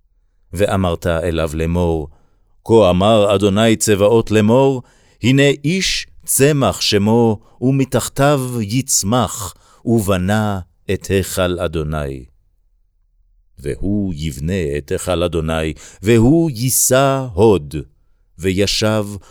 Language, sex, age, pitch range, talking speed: Hebrew, male, 50-69, 85-110 Hz, 85 wpm